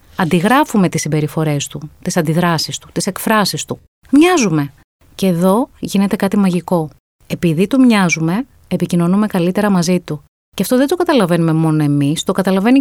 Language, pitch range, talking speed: Greek, 160-225 Hz, 150 wpm